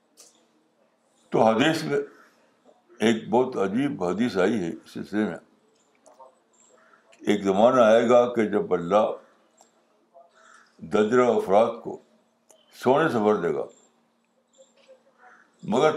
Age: 60-79